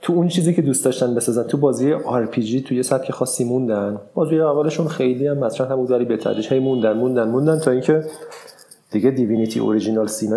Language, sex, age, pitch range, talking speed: Persian, male, 30-49, 110-140 Hz, 210 wpm